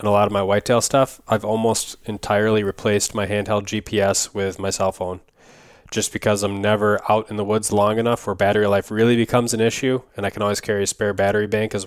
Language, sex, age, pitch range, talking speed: English, male, 20-39, 100-110 Hz, 225 wpm